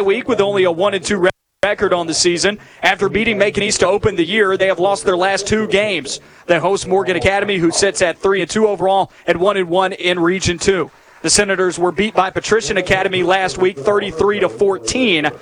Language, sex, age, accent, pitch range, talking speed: English, male, 30-49, American, 180-205 Hz, 220 wpm